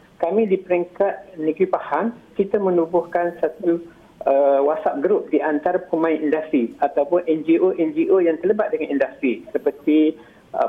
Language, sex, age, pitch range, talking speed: Malay, male, 50-69, 150-200 Hz, 130 wpm